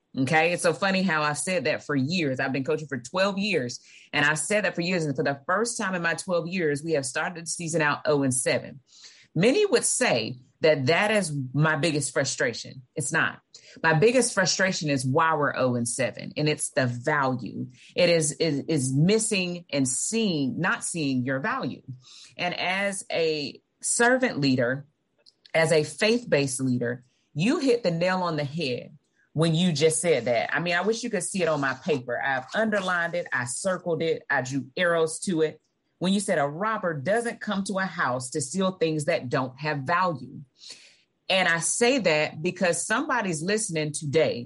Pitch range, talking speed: 145-195 Hz, 195 wpm